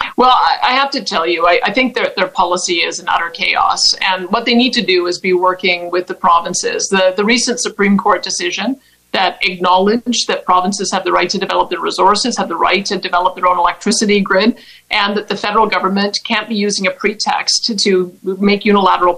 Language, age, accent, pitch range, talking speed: English, 50-69, American, 185-230 Hz, 205 wpm